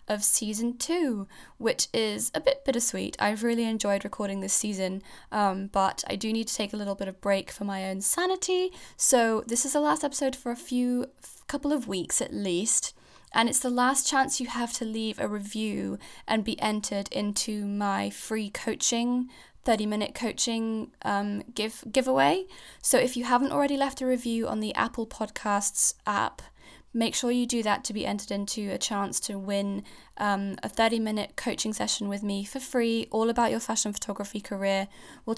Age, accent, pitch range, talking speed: 10-29, British, 200-245 Hz, 190 wpm